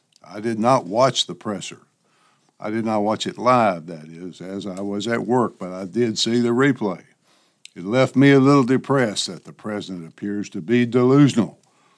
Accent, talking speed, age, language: American, 190 wpm, 60-79, English